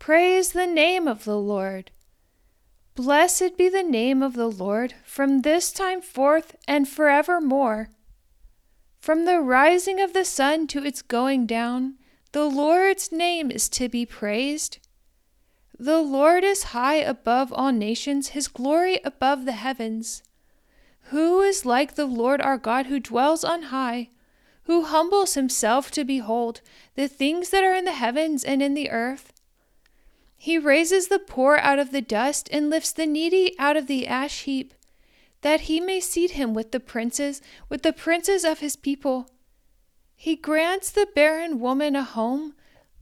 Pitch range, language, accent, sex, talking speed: 255-330 Hz, English, American, female, 160 wpm